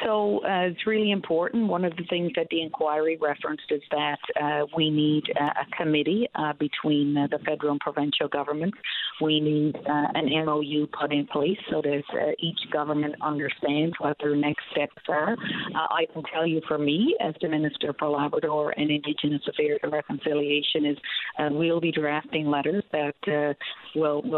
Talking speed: 180 wpm